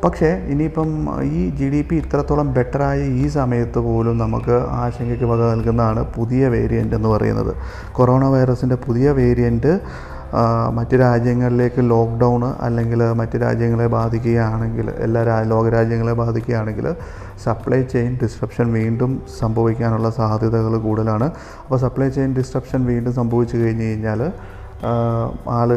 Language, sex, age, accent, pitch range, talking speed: Malayalam, male, 30-49, native, 115-130 Hz, 115 wpm